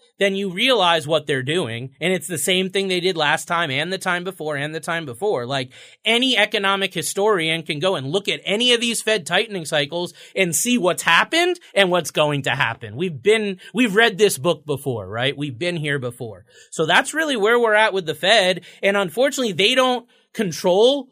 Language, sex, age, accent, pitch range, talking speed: English, male, 30-49, American, 155-215 Hz, 205 wpm